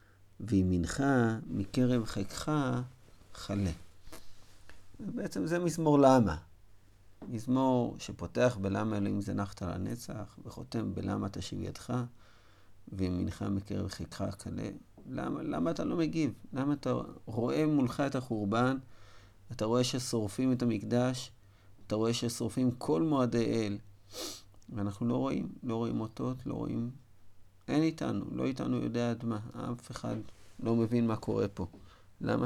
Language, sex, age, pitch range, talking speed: Hebrew, male, 50-69, 95-120 Hz, 125 wpm